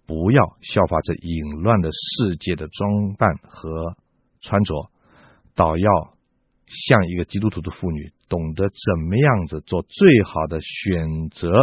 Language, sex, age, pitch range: Chinese, male, 50-69, 80-110 Hz